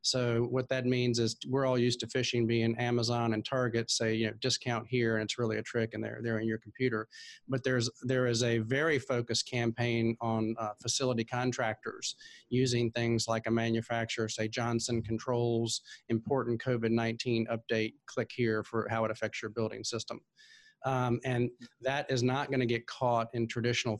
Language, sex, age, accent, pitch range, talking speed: English, male, 40-59, American, 115-130 Hz, 180 wpm